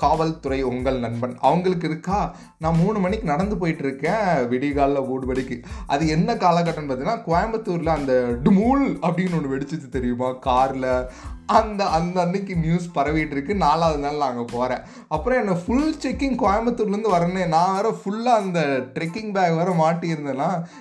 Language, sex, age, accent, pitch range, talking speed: Tamil, male, 30-49, native, 135-195 Hz, 140 wpm